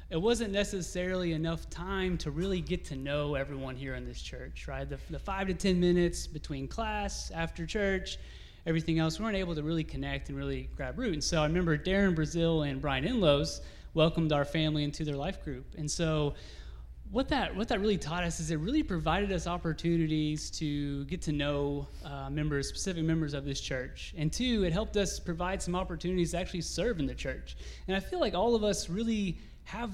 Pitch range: 145-185 Hz